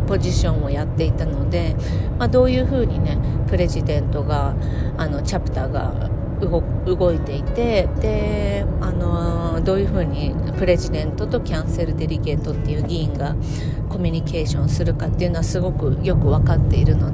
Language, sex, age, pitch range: Japanese, female, 40-59, 95-115 Hz